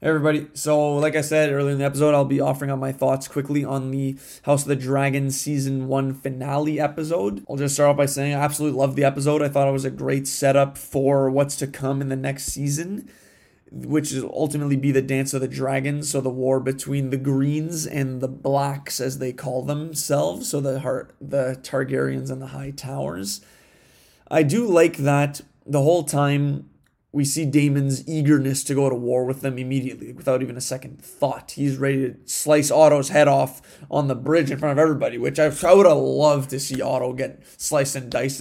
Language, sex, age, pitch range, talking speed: English, male, 20-39, 135-145 Hz, 210 wpm